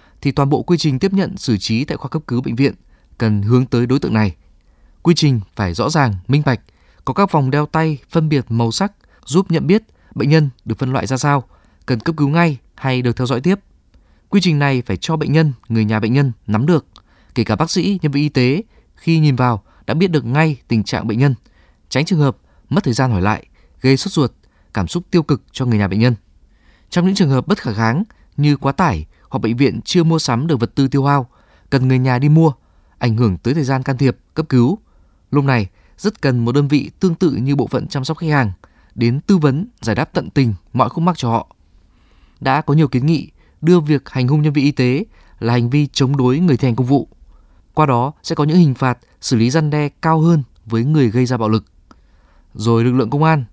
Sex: male